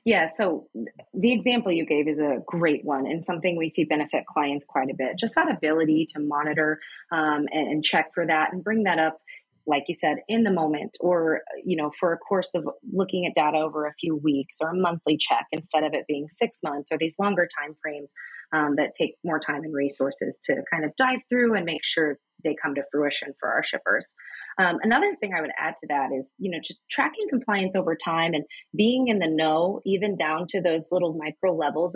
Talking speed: 220 wpm